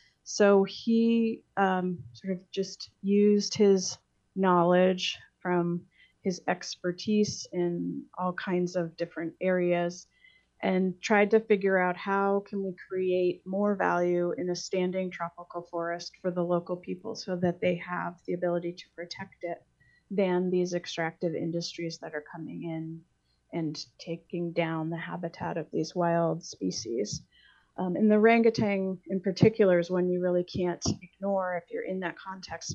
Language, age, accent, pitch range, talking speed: English, 30-49, American, 170-190 Hz, 150 wpm